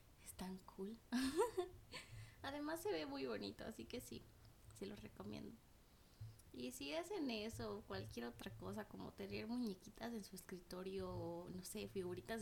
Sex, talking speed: female, 150 wpm